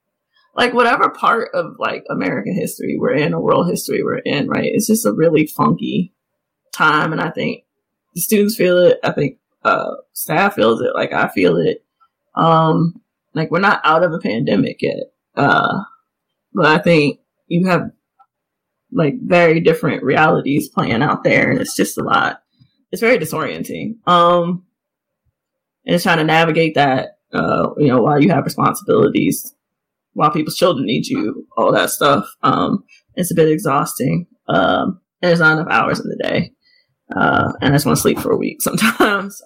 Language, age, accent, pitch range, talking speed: English, 20-39, American, 170-265 Hz, 175 wpm